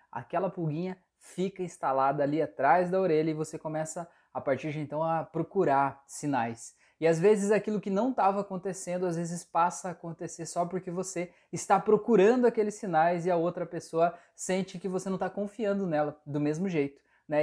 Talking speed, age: 180 wpm, 20-39